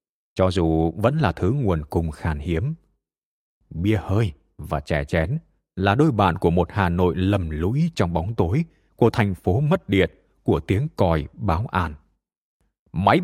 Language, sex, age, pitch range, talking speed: Vietnamese, male, 20-39, 85-115 Hz, 170 wpm